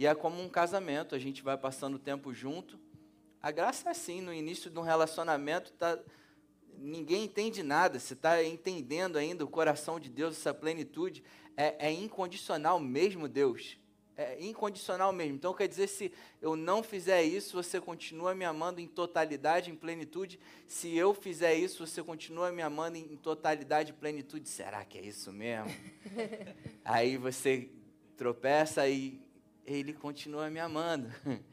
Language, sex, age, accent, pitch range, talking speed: Portuguese, male, 20-39, Brazilian, 135-165 Hz, 160 wpm